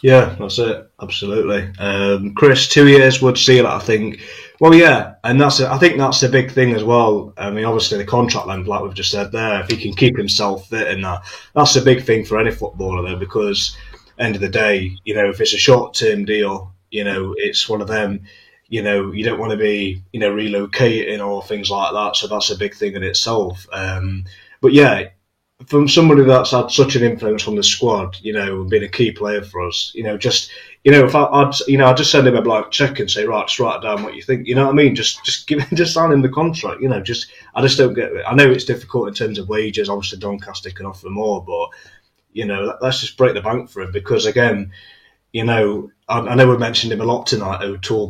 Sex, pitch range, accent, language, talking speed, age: male, 100-130 Hz, British, English, 250 wpm, 20-39